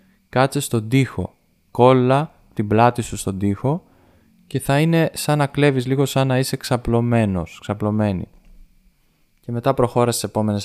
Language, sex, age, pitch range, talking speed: Greek, male, 20-39, 100-125 Hz, 145 wpm